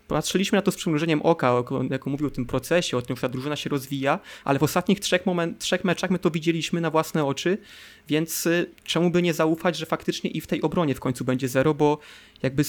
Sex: male